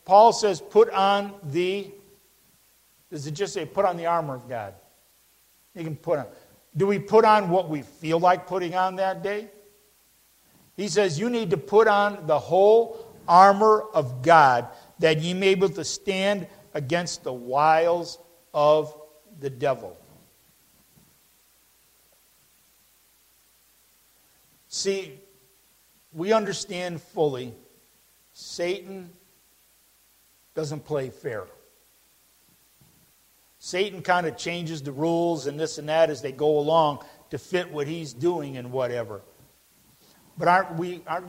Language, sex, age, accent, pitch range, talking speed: English, male, 50-69, American, 145-190 Hz, 130 wpm